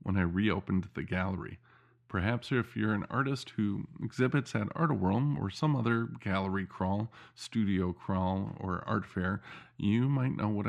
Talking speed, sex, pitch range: 155 wpm, male, 95-125 Hz